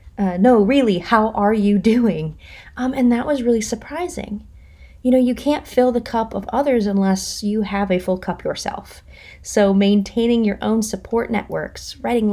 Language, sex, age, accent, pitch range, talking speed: English, female, 30-49, American, 185-240 Hz, 175 wpm